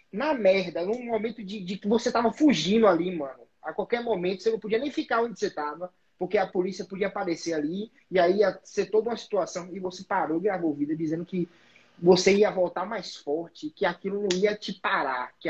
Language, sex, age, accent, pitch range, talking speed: Portuguese, male, 20-39, Brazilian, 165-220 Hz, 215 wpm